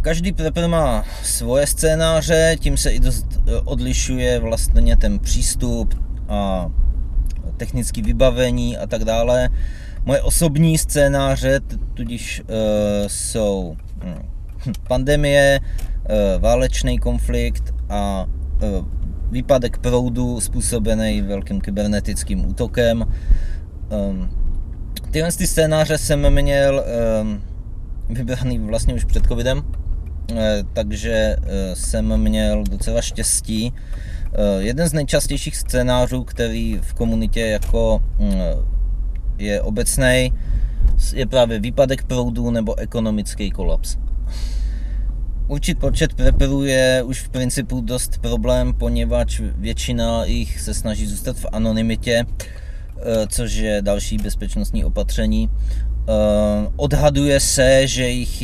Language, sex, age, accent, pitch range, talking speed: Czech, male, 30-49, native, 100-125 Hz, 90 wpm